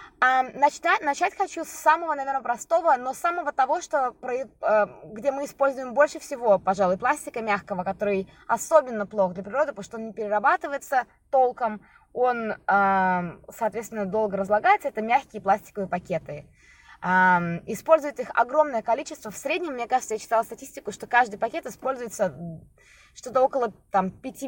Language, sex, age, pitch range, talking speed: Russian, female, 20-39, 205-280 Hz, 135 wpm